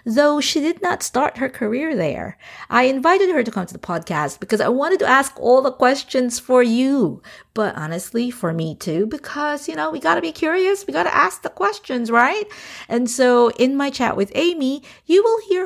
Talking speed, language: 215 wpm, English